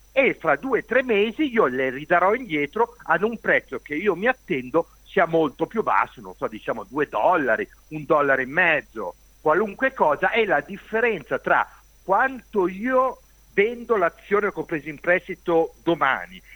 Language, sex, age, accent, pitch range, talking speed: Italian, male, 50-69, native, 140-215 Hz, 165 wpm